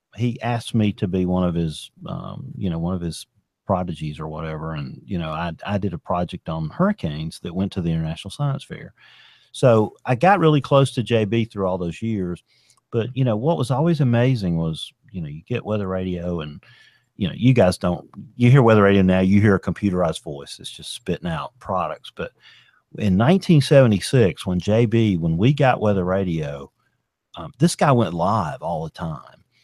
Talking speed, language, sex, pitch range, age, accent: 200 wpm, English, male, 90-125 Hz, 40-59, American